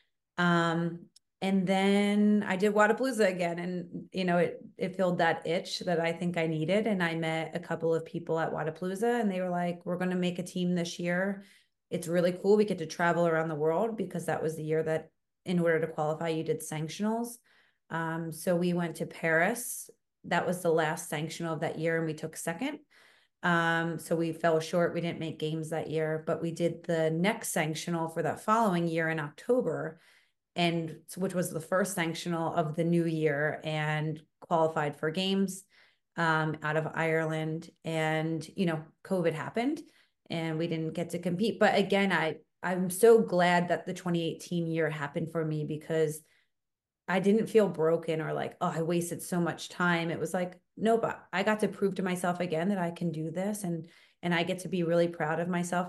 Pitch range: 160-185 Hz